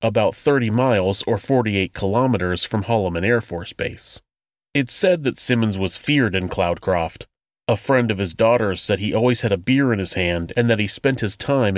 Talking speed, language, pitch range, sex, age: 200 wpm, English, 95-125 Hz, male, 30-49